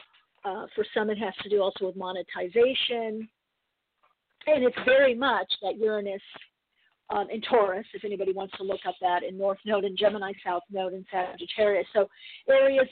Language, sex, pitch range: English, female, 195-255 Hz